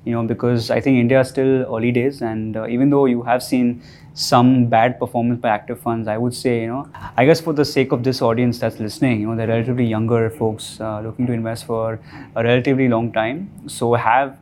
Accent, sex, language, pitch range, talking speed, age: Indian, male, English, 110-130 Hz, 230 wpm, 20-39